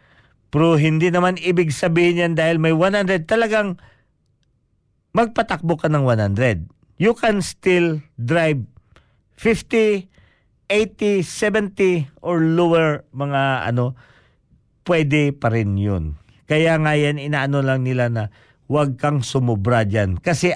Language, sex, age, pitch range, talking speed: Filipino, male, 50-69, 120-160 Hz, 120 wpm